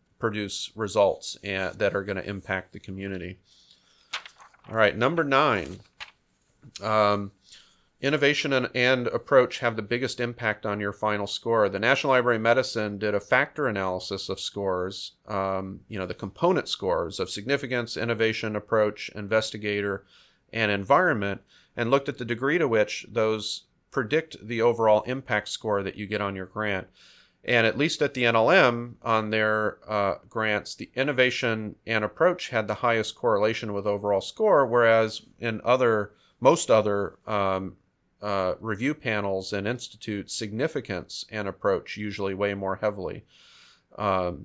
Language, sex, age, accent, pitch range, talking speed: English, male, 40-59, American, 100-120 Hz, 145 wpm